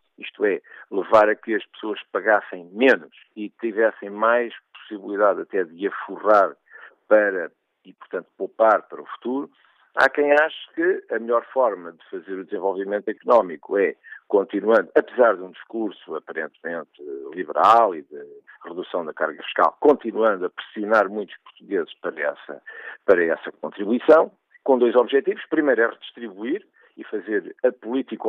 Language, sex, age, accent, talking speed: Portuguese, male, 50-69, Portuguese, 145 wpm